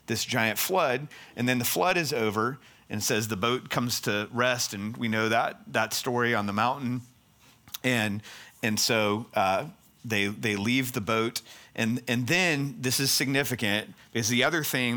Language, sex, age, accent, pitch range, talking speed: English, male, 40-59, American, 110-130 Hz, 175 wpm